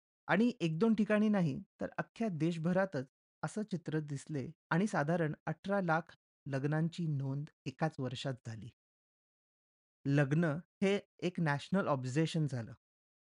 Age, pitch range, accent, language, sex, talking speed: 30-49, 140-190 Hz, native, Marathi, male, 115 wpm